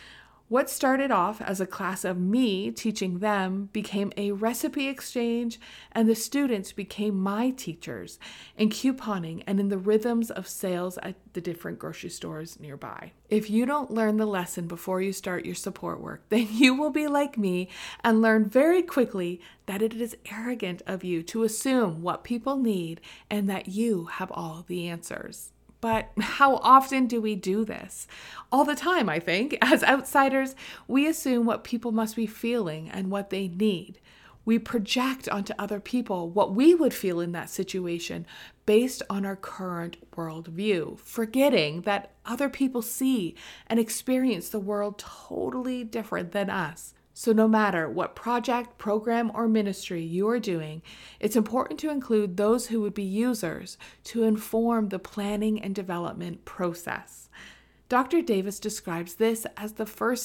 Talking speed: 160 wpm